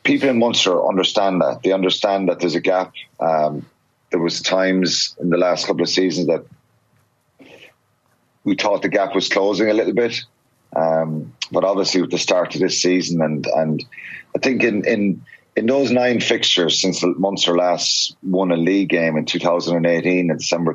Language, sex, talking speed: English, male, 175 wpm